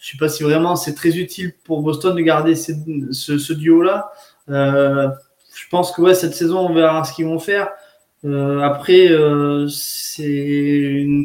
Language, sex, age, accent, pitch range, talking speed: French, male, 20-39, French, 145-175 Hz, 185 wpm